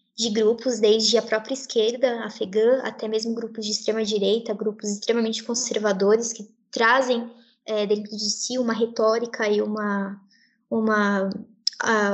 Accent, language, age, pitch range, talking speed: Brazilian, Portuguese, 10-29, 210-255 Hz, 125 wpm